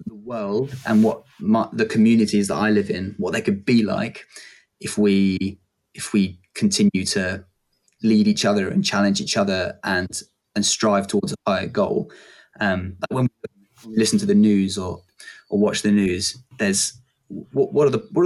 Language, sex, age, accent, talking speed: English, male, 20-39, British, 180 wpm